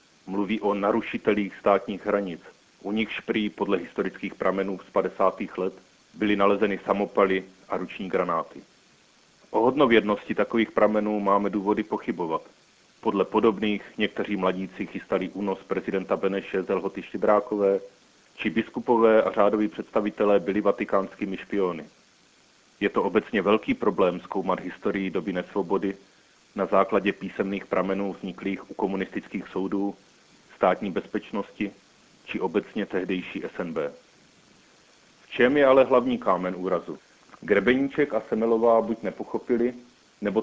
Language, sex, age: Czech, male, 40-59